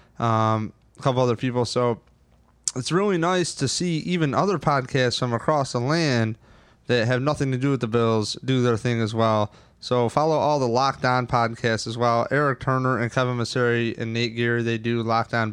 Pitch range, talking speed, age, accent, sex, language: 115-135 Hz, 195 wpm, 20-39, American, male, English